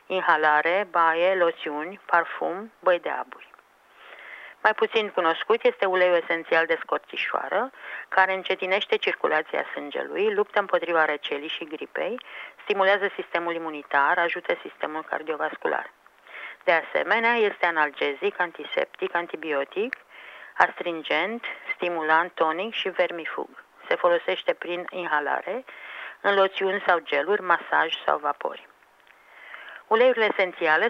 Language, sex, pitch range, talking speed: Romanian, female, 165-210 Hz, 105 wpm